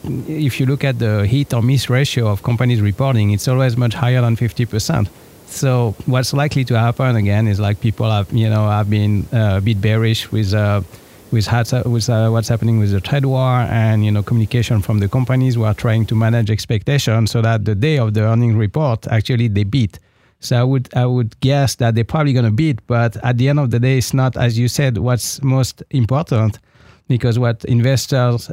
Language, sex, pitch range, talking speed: English, male, 110-130 Hz, 215 wpm